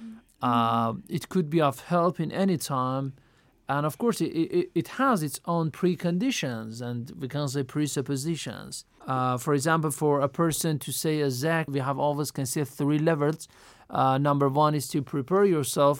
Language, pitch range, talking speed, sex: Persian, 140-175 Hz, 175 wpm, male